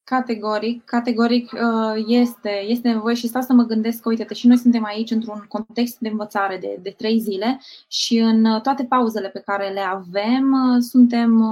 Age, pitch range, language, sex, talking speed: 20-39, 210-245 Hz, Romanian, female, 165 wpm